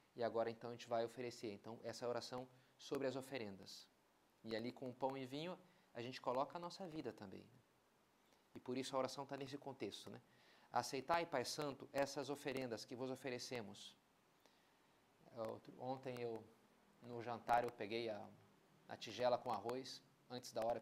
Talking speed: 165 wpm